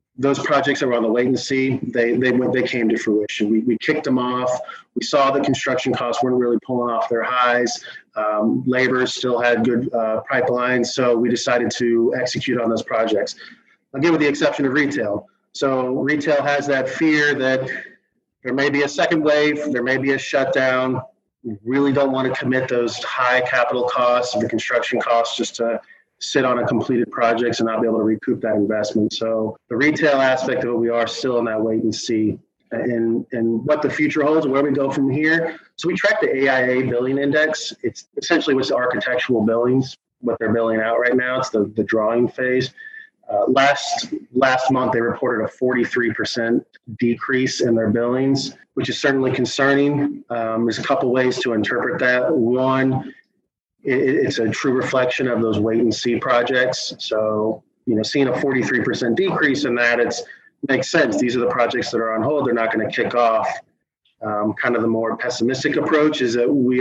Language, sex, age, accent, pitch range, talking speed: English, male, 30-49, American, 115-135 Hz, 195 wpm